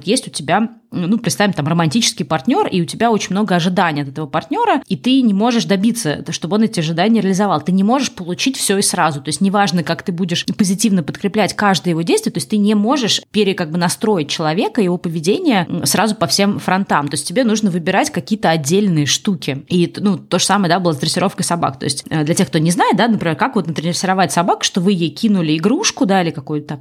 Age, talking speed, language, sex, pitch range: 20-39, 225 wpm, Russian, female, 170-215 Hz